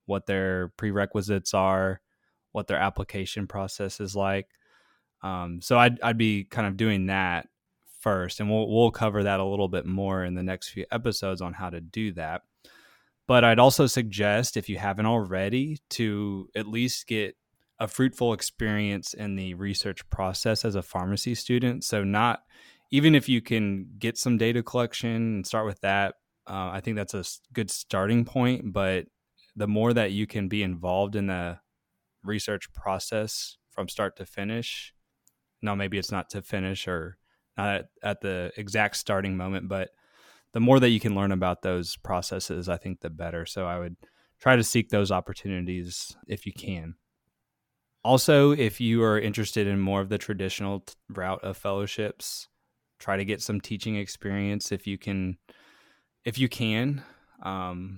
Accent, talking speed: American, 170 wpm